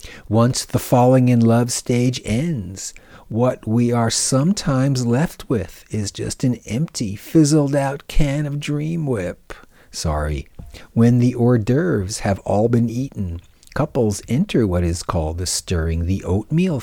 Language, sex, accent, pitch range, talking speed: English, male, American, 95-135 Hz, 130 wpm